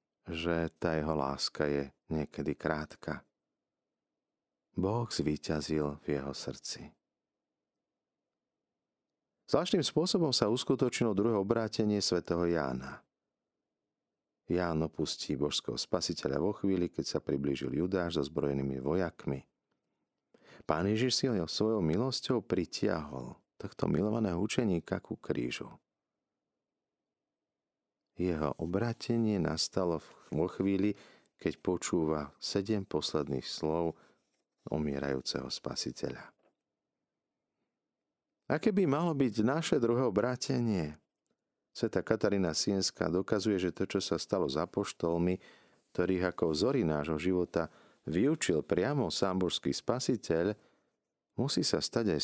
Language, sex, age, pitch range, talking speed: Slovak, male, 40-59, 75-105 Hz, 100 wpm